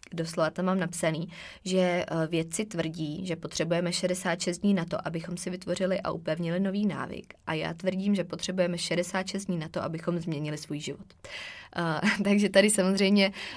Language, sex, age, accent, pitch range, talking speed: Czech, female, 20-39, native, 170-195 Hz, 160 wpm